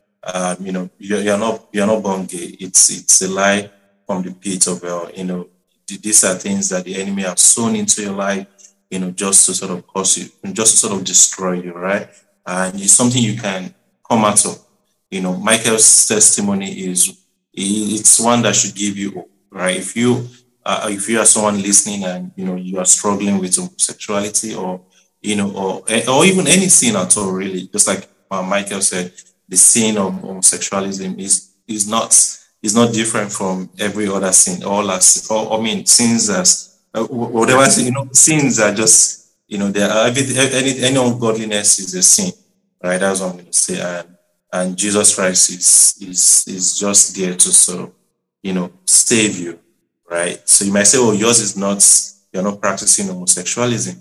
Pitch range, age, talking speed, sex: 95-110 Hz, 30-49, 195 wpm, male